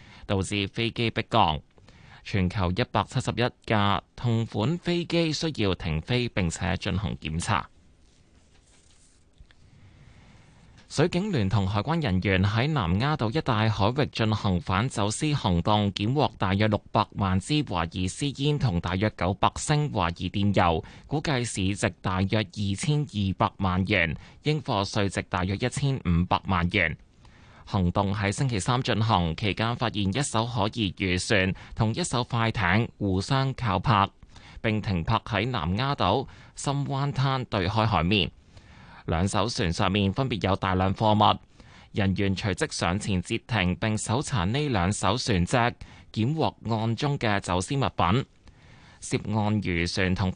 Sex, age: male, 20-39